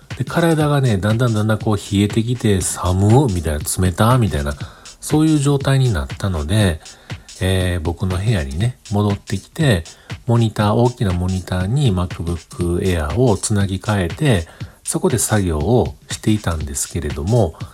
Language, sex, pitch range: Japanese, male, 90-125 Hz